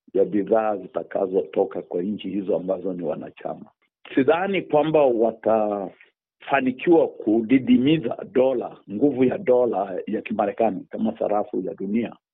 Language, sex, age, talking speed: Swahili, male, 50-69, 115 wpm